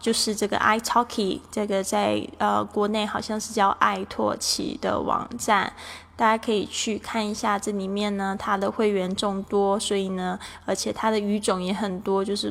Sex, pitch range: female, 185-210 Hz